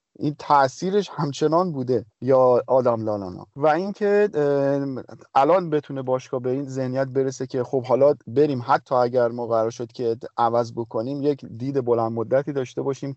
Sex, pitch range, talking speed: male, 120-150 Hz, 155 wpm